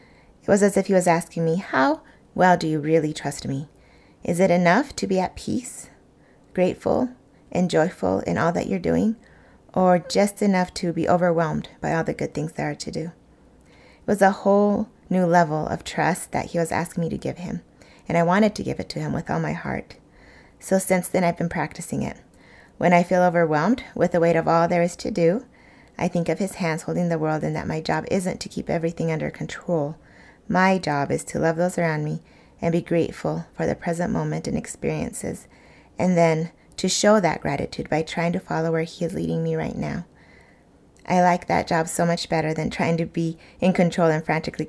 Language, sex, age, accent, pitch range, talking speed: English, female, 30-49, American, 165-185 Hz, 215 wpm